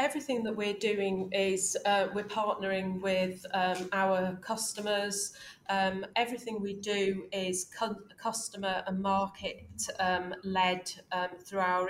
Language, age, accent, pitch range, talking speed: English, 30-49, British, 185-205 Hz, 130 wpm